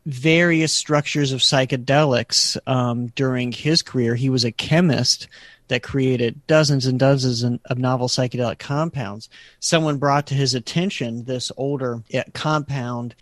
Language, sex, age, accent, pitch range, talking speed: English, male, 40-59, American, 125-150 Hz, 135 wpm